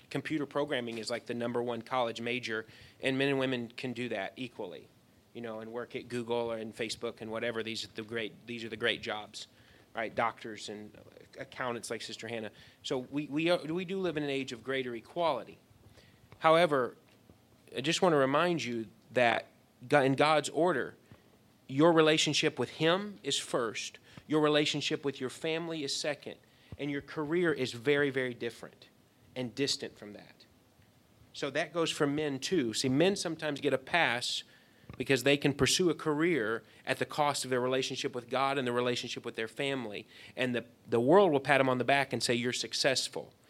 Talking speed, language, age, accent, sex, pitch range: 190 wpm, English, 30-49, American, male, 115-145 Hz